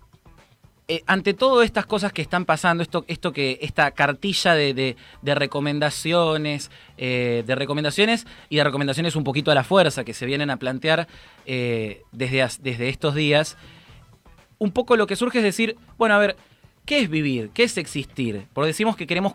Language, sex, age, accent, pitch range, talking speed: Spanish, male, 20-39, Argentinian, 140-195 Hz, 185 wpm